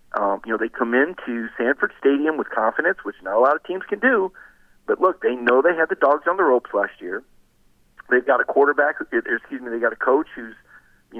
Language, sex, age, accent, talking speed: English, male, 40-59, American, 230 wpm